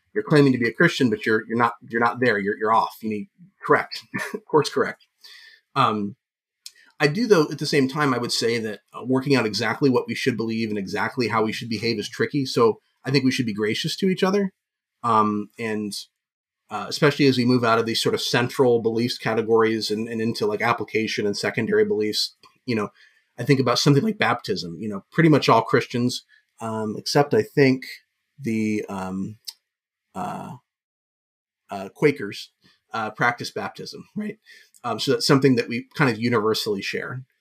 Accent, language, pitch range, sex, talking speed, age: American, English, 110-145 Hz, male, 190 wpm, 30-49